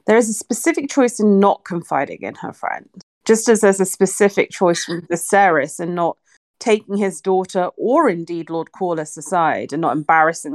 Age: 30-49